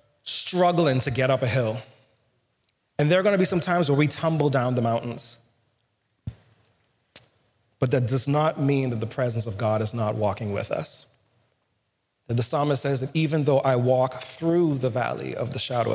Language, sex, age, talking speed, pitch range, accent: English, male, 30-49, 185 wpm, 115-145 Hz, American